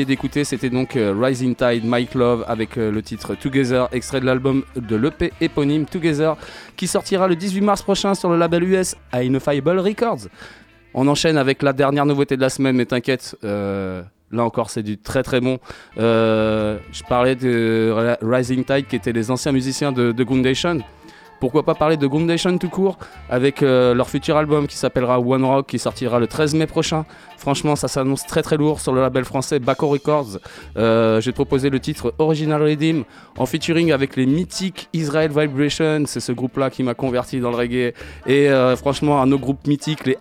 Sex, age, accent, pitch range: male, 20-39, French, 125-150 Hz